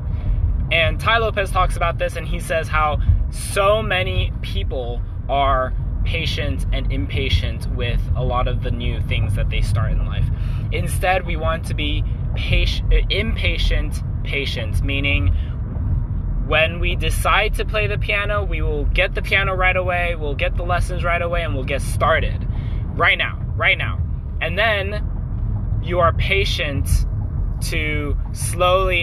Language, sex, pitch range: English, male, 90-110 Hz